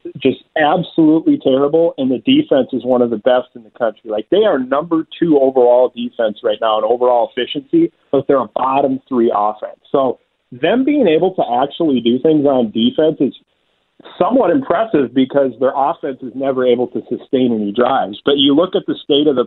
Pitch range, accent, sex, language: 125-160 Hz, American, male, English